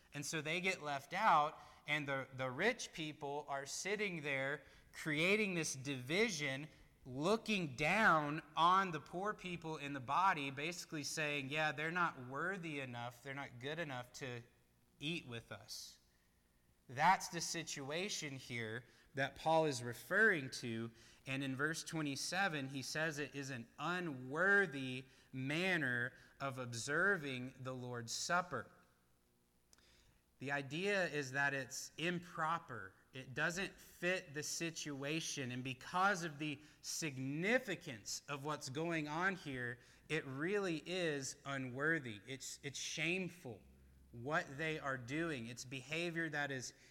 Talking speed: 130 wpm